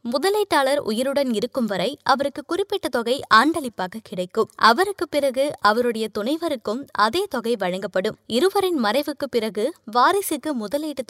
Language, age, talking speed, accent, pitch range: Tamil, 20-39, 95 wpm, native, 215-290 Hz